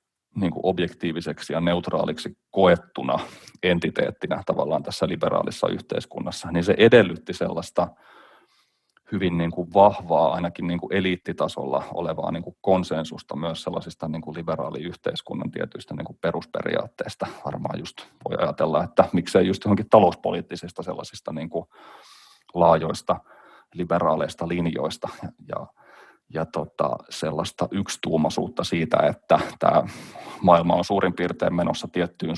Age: 30-49